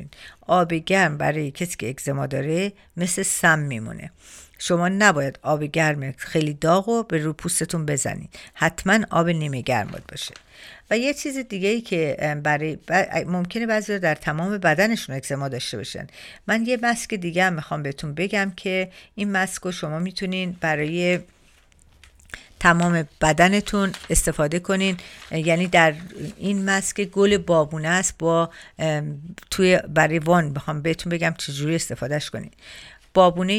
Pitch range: 155-190 Hz